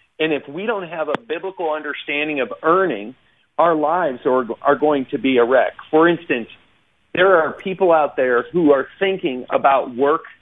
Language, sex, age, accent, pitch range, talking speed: English, male, 40-59, American, 140-180 Hz, 175 wpm